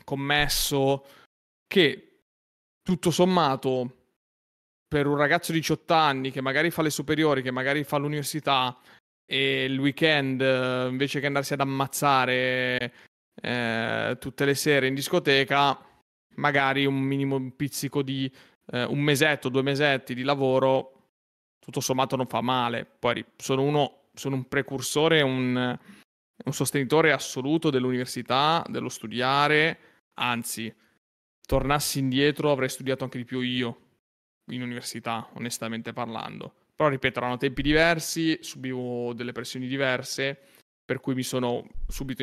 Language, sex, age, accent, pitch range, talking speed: Italian, male, 30-49, native, 125-140 Hz, 130 wpm